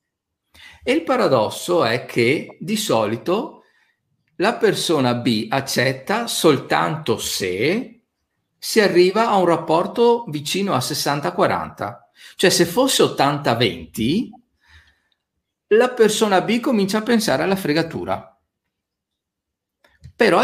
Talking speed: 100 wpm